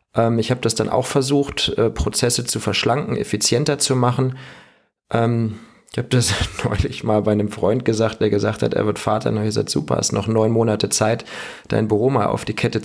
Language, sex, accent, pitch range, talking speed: German, male, German, 105-120 Hz, 205 wpm